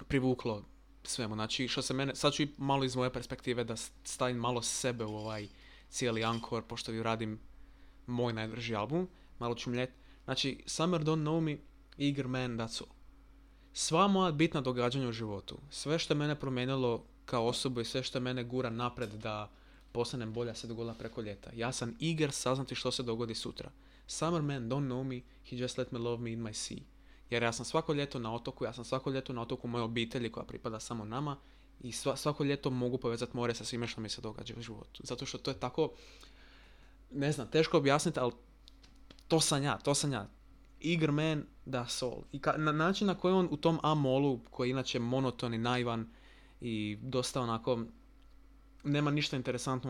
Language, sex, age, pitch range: Croatian, male, 20-39, 115-140 Hz